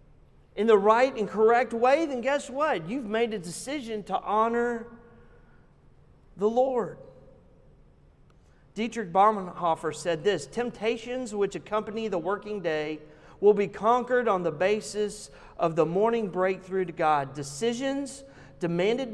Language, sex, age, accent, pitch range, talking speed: English, male, 40-59, American, 160-225 Hz, 130 wpm